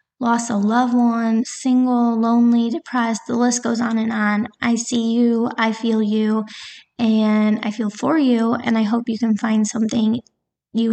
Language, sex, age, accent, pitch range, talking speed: English, female, 20-39, American, 220-245 Hz, 175 wpm